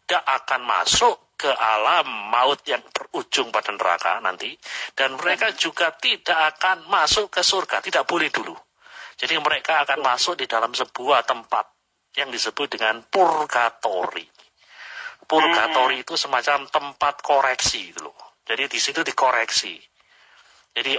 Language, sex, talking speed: Indonesian, male, 125 wpm